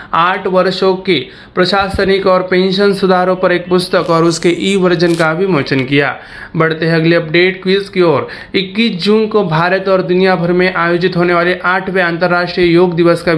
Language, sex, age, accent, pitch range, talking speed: Marathi, male, 30-49, native, 160-185 Hz, 185 wpm